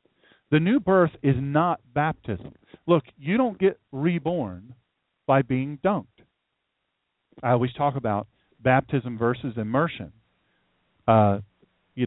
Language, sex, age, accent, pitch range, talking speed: English, male, 40-59, American, 115-155 Hz, 115 wpm